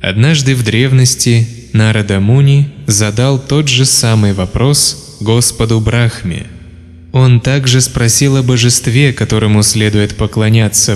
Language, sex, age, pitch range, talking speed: Russian, male, 20-39, 105-125 Hz, 110 wpm